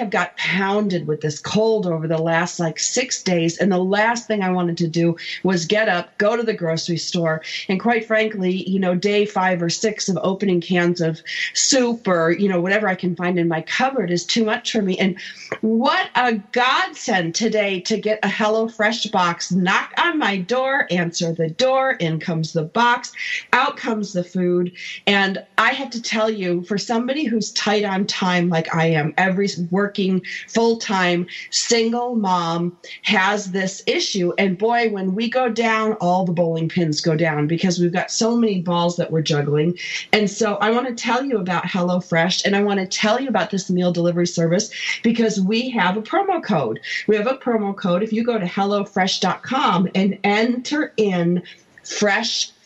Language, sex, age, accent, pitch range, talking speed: English, female, 40-59, American, 175-225 Hz, 195 wpm